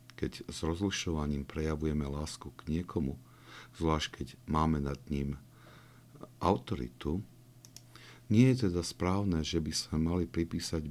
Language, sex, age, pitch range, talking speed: Slovak, male, 50-69, 75-95 Hz, 120 wpm